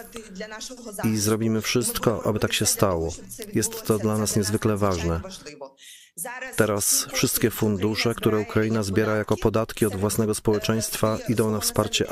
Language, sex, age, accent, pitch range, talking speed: Polish, male, 40-59, native, 105-125 Hz, 135 wpm